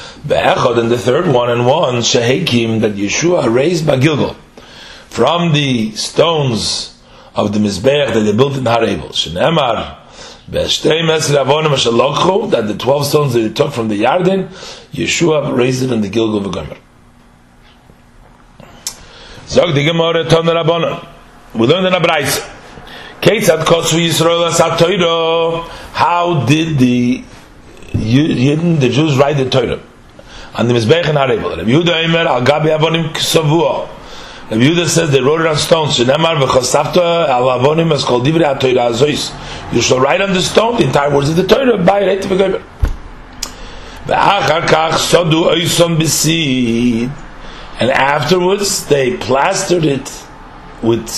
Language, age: English, 40-59